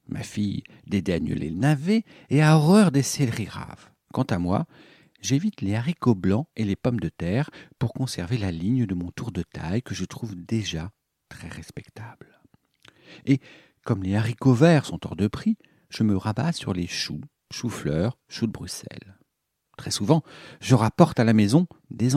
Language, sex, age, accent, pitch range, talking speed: French, male, 50-69, French, 95-135 Hz, 175 wpm